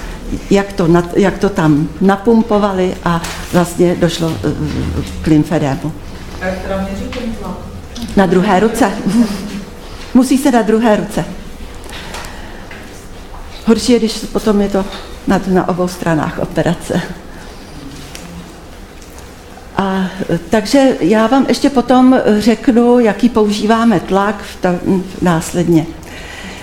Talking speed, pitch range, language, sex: 85 wpm, 175-225 Hz, Czech, female